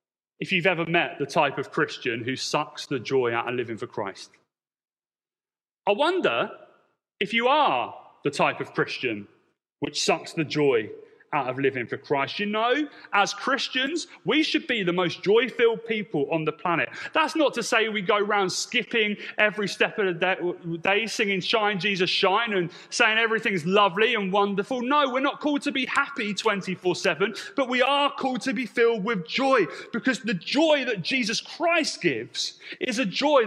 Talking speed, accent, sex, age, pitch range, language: 175 wpm, British, male, 30-49, 175-235 Hz, English